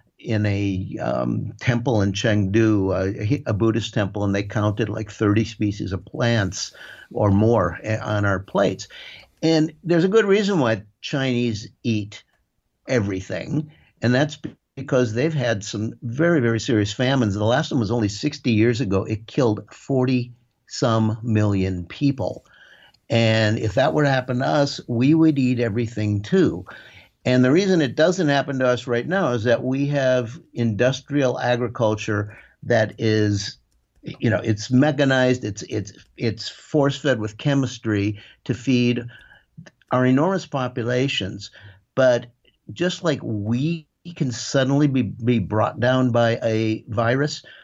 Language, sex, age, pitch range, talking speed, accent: English, male, 60-79, 105-135 Hz, 145 wpm, American